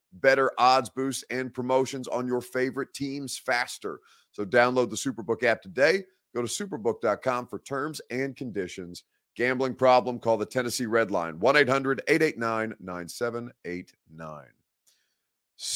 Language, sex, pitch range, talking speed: English, male, 100-130 Hz, 120 wpm